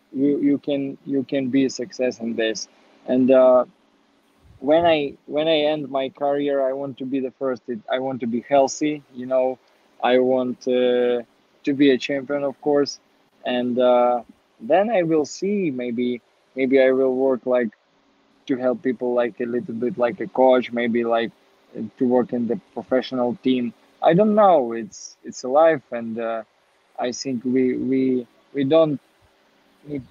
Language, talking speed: English, 175 wpm